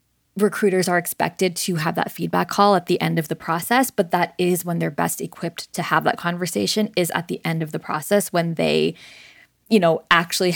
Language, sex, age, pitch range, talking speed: English, female, 20-39, 170-195 Hz, 210 wpm